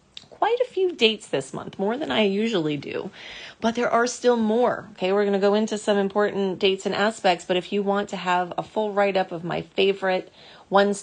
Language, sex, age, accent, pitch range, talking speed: English, female, 30-49, American, 170-215 Hz, 220 wpm